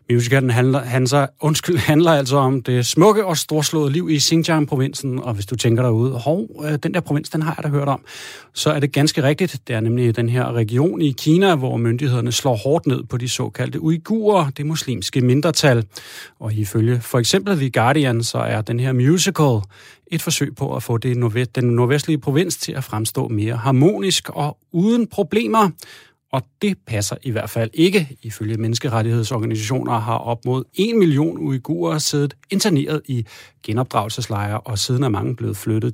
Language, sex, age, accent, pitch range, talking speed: Danish, male, 30-49, native, 115-155 Hz, 175 wpm